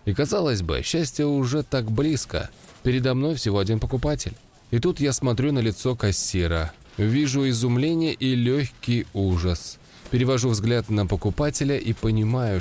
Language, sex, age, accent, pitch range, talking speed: Russian, male, 20-39, native, 95-135 Hz, 145 wpm